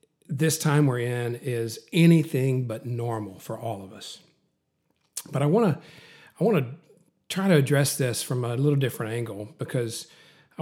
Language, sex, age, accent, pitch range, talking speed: English, male, 40-59, American, 120-155 Hz, 160 wpm